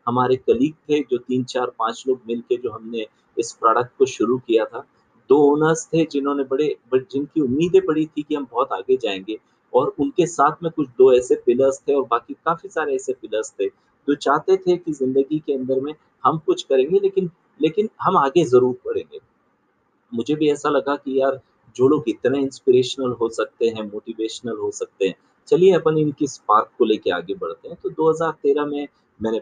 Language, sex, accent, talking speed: Hindi, male, native, 190 wpm